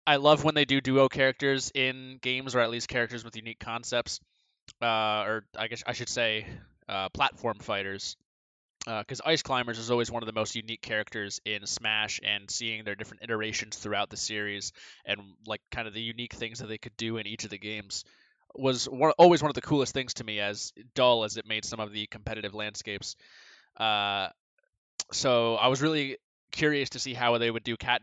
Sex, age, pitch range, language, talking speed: male, 20-39, 110-130 Hz, English, 205 wpm